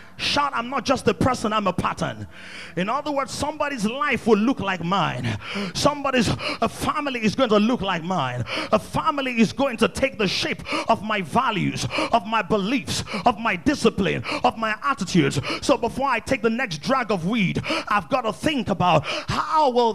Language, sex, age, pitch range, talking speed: English, male, 30-49, 215-280 Hz, 190 wpm